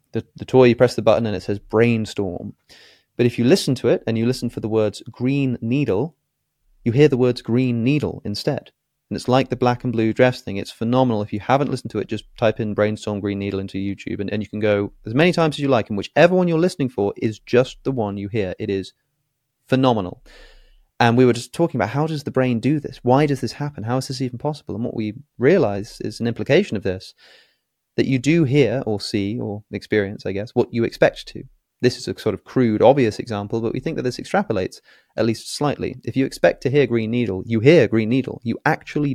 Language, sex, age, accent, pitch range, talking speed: English, male, 30-49, British, 110-135 Hz, 240 wpm